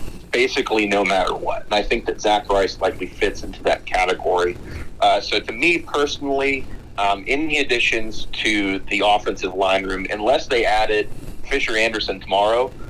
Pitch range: 100-145 Hz